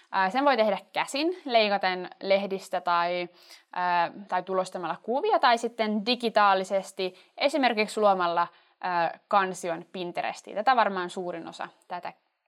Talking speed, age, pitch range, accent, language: 105 wpm, 20-39, 185-250 Hz, native, Finnish